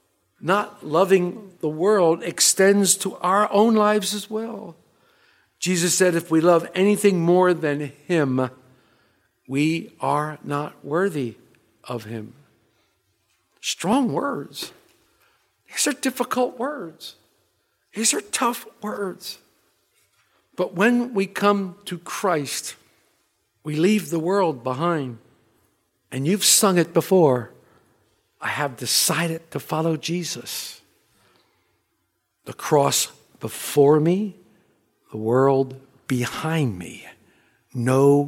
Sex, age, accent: male, 60-79, American